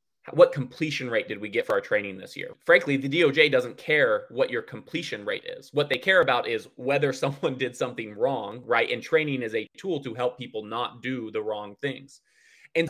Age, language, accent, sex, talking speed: 20-39, English, American, male, 215 wpm